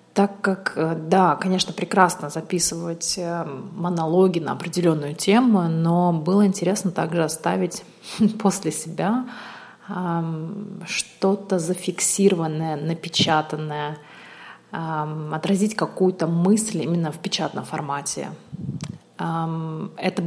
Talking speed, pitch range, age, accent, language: 85 wpm, 165-200 Hz, 30-49, native, Russian